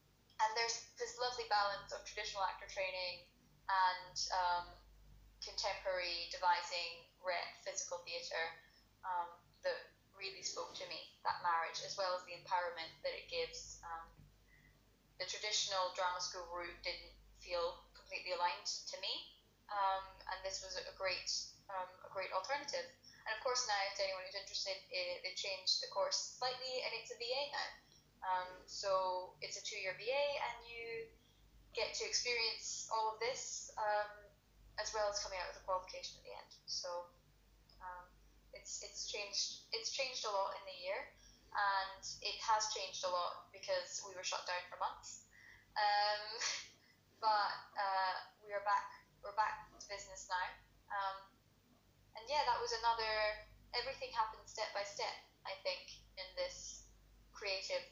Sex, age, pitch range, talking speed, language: female, 10-29, 180-230 Hz, 155 wpm, English